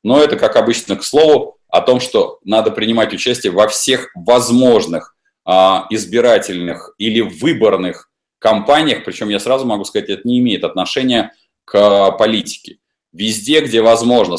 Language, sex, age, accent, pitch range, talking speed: Russian, male, 20-39, native, 100-150 Hz, 140 wpm